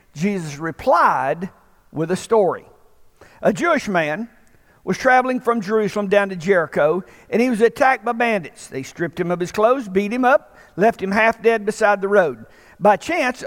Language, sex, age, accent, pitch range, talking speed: English, male, 50-69, American, 200-245 Hz, 170 wpm